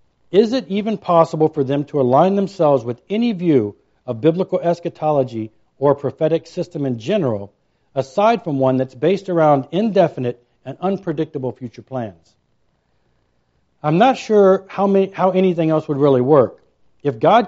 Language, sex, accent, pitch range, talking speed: English, male, American, 130-185 Hz, 150 wpm